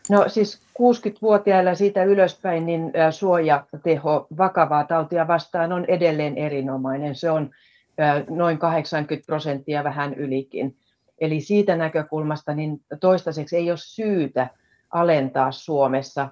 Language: Finnish